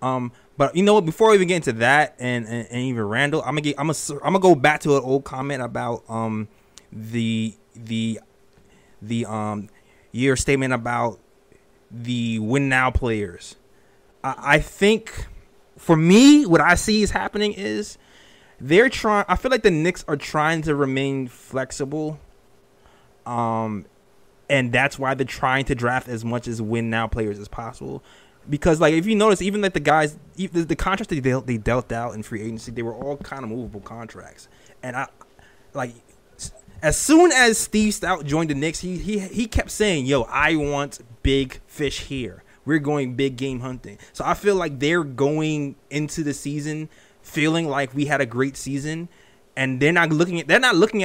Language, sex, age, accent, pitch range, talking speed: English, male, 20-39, American, 120-160 Hz, 185 wpm